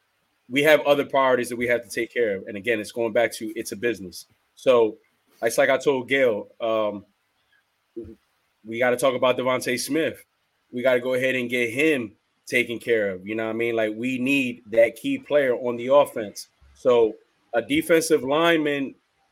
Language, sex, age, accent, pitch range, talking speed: English, male, 20-39, American, 115-150 Hz, 195 wpm